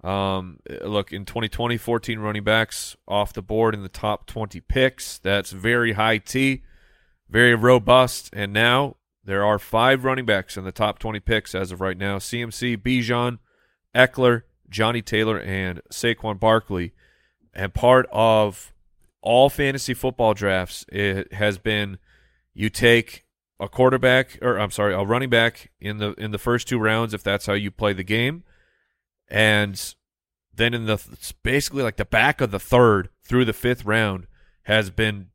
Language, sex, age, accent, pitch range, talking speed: English, male, 30-49, American, 100-125 Hz, 165 wpm